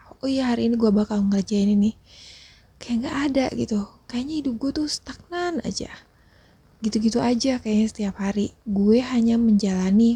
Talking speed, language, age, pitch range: 160 wpm, Indonesian, 20-39, 195-240 Hz